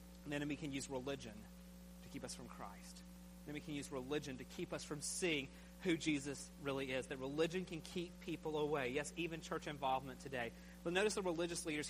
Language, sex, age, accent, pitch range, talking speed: English, male, 30-49, American, 145-190 Hz, 205 wpm